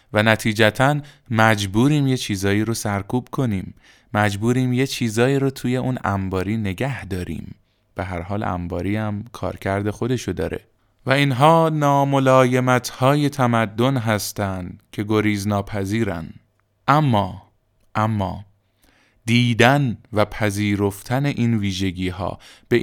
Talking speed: 105 wpm